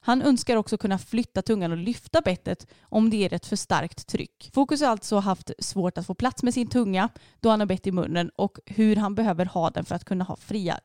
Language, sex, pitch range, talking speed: Swedish, female, 185-240 Hz, 245 wpm